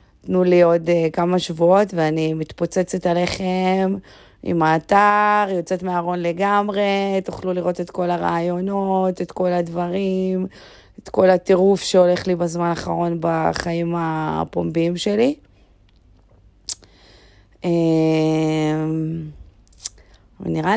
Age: 30-49